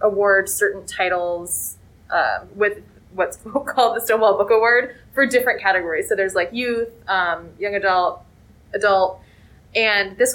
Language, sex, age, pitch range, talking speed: English, female, 20-39, 200-255 Hz, 140 wpm